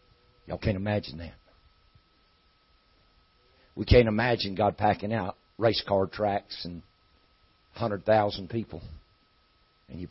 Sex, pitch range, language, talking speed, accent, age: male, 90-115 Hz, English, 105 wpm, American, 60-79